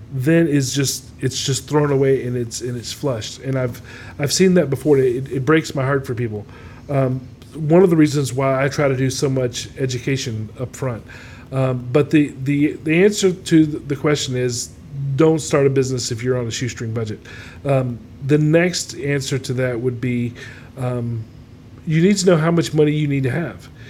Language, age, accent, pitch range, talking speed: English, 40-59, American, 125-155 Hz, 200 wpm